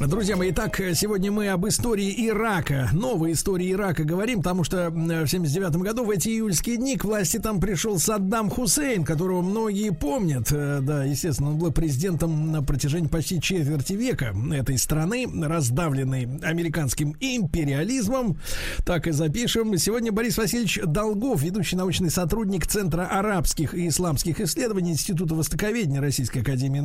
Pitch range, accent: 155-215 Hz, native